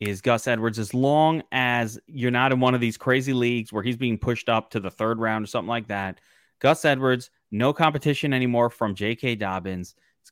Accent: American